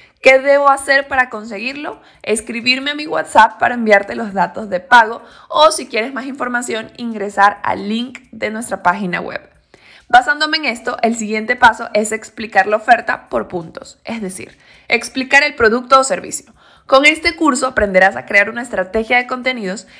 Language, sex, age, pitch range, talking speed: Spanish, female, 20-39, 215-275 Hz, 170 wpm